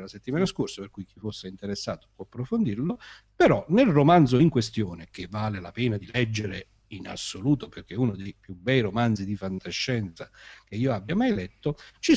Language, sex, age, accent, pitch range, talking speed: Italian, male, 50-69, native, 105-160 Hz, 185 wpm